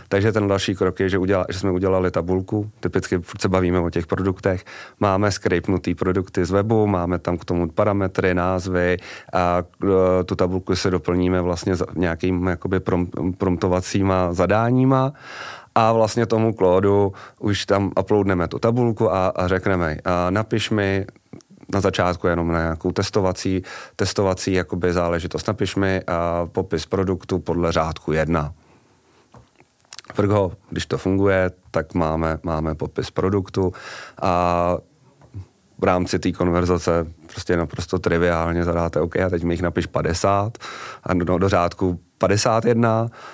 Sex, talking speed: male, 140 wpm